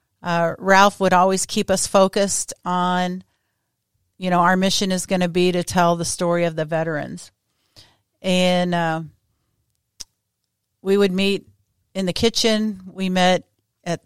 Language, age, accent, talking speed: English, 50-69, American, 145 wpm